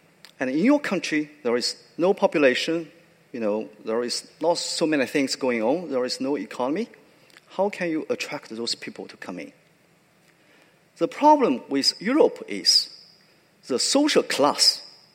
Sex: male